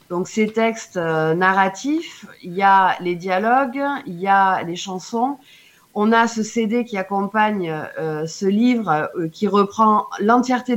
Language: French